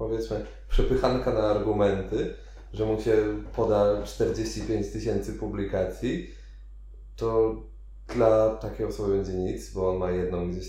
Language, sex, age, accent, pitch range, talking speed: Polish, male, 20-39, native, 85-105 Hz, 125 wpm